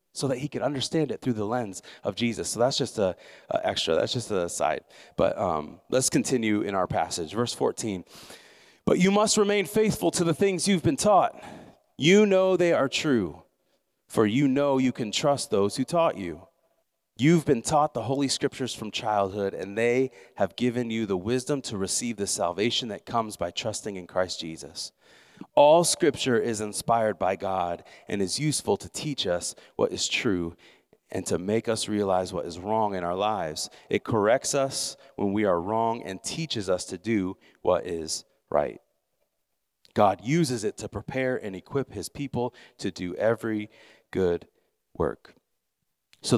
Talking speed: 175 wpm